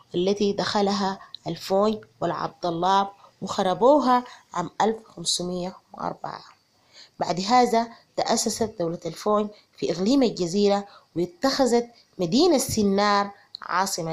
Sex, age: female, 30-49